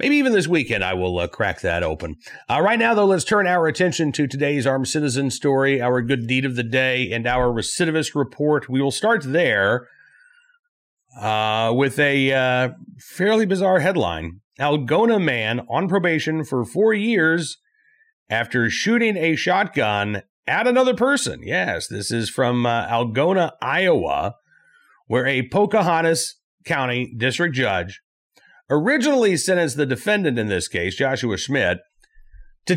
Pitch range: 120-195 Hz